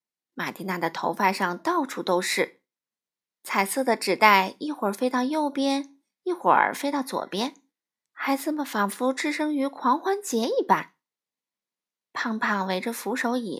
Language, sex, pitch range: Chinese, female, 205-310 Hz